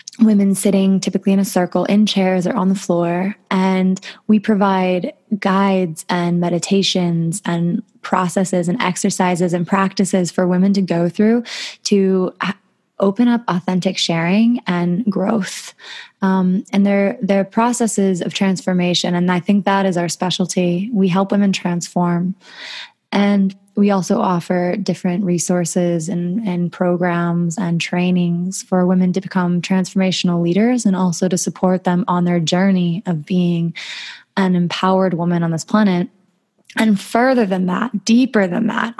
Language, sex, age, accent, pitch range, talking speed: English, female, 20-39, American, 180-205 Hz, 145 wpm